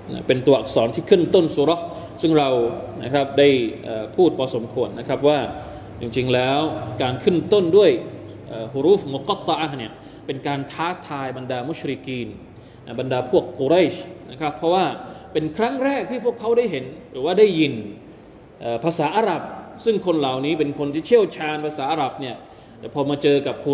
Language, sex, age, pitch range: Thai, male, 20-39, 125-170 Hz